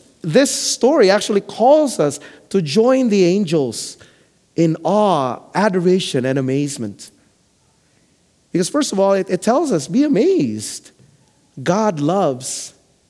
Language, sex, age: English, male, 40-59